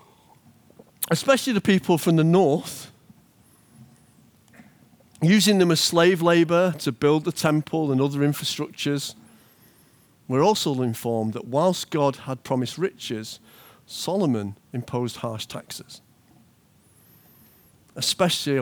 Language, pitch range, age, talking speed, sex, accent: English, 115-160 Hz, 50-69, 105 wpm, male, British